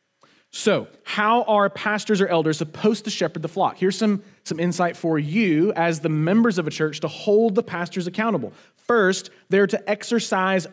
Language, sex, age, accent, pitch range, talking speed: English, male, 30-49, American, 155-210 Hz, 180 wpm